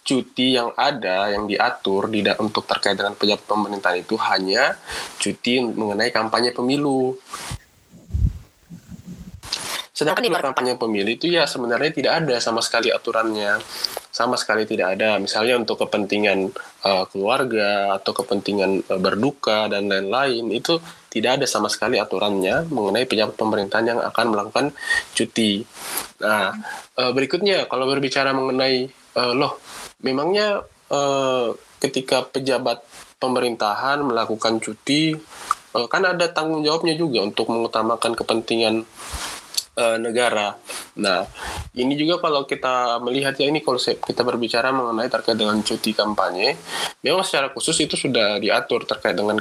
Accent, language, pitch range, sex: native, Indonesian, 110-135 Hz, male